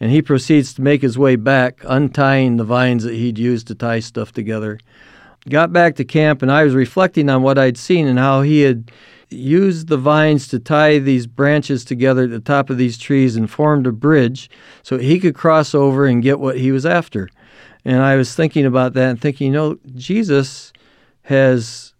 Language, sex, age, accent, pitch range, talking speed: English, male, 50-69, American, 125-150 Hz, 205 wpm